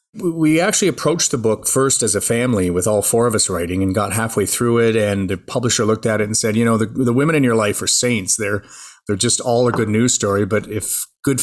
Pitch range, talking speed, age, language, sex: 110-130 Hz, 255 wpm, 30-49, English, male